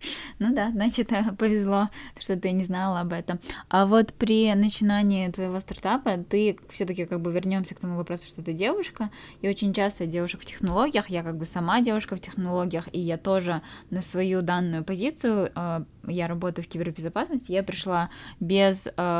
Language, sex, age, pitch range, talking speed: Russian, female, 10-29, 170-195 Hz, 170 wpm